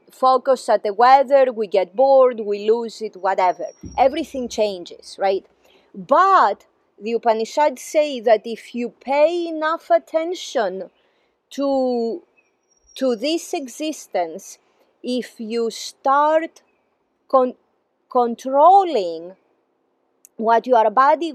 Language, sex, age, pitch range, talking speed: English, female, 30-49, 220-300 Hz, 100 wpm